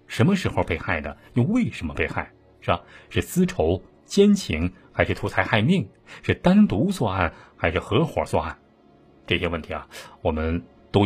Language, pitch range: Chinese, 85-115 Hz